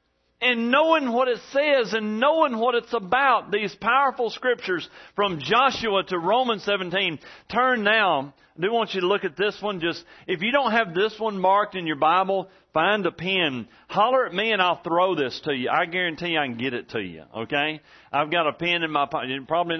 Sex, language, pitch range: male, English, 130-210 Hz